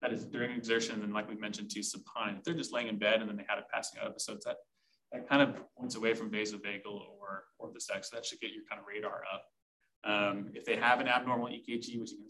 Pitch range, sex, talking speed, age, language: 105-125 Hz, male, 270 wpm, 20-39, English